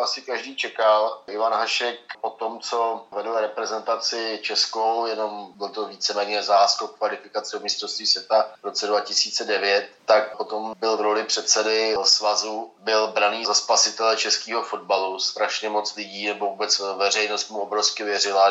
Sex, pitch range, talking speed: male, 100-110 Hz, 145 wpm